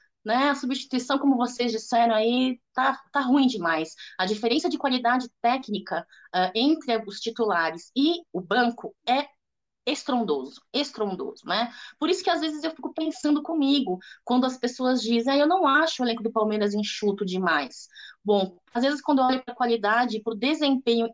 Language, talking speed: Portuguese, 170 wpm